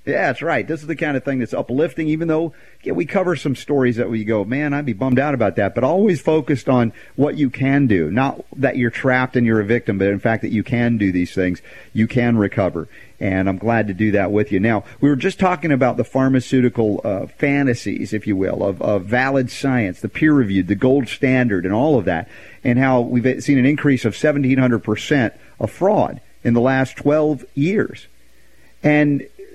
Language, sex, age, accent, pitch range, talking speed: English, male, 50-69, American, 120-155 Hz, 215 wpm